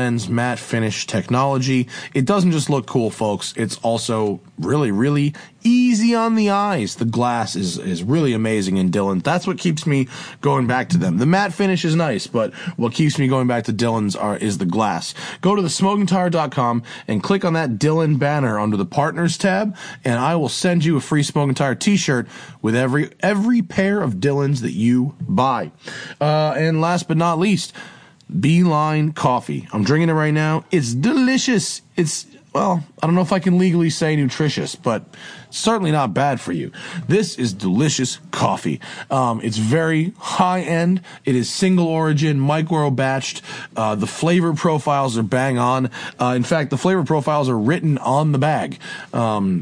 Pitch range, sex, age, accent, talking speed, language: 130-180 Hz, male, 20-39, American, 180 wpm, English